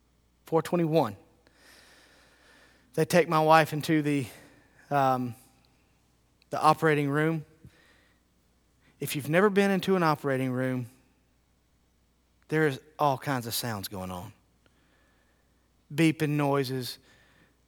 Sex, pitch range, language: male, 130-190 Hz, English